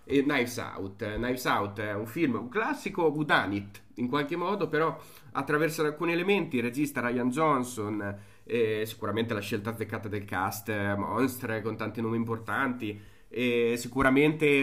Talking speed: 155 wpm